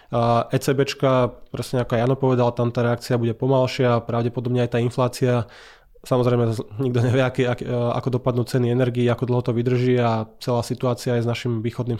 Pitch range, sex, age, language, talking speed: 120-135 Hz, male, 20-39, Slovak, 165 wpm